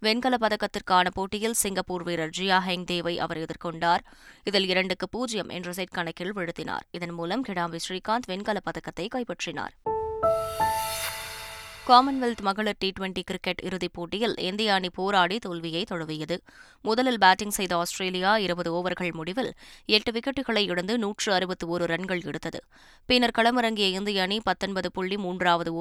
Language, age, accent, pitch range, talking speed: Tamil, 20-39, native, 175-220 Hz, 135 wpm